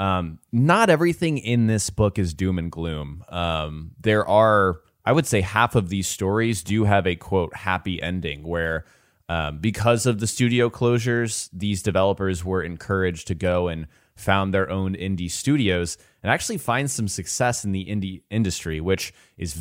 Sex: male